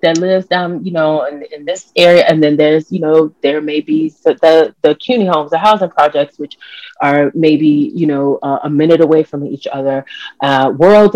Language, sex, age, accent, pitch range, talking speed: English, female, 30-49, American, 145-165 Hz, 210 wpm